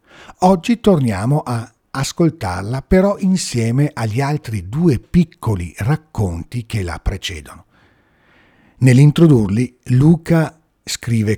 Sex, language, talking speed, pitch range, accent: male, Italian, 90 wpm, 105-160 Hz, native